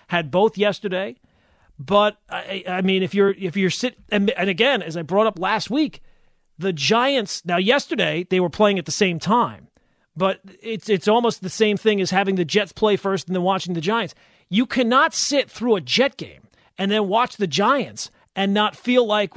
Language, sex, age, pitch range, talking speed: English, male, 40-59, 190-245 Hz, 205 wpm